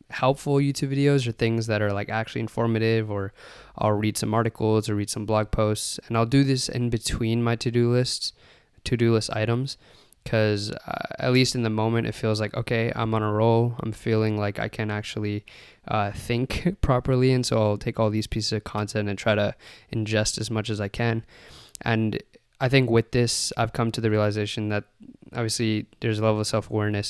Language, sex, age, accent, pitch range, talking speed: English, male, 20-39, American, 105-115 Hz, 200 wpm